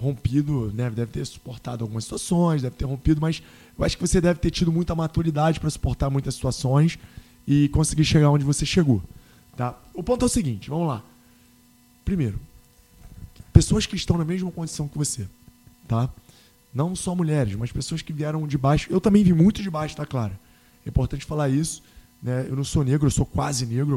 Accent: Brazilian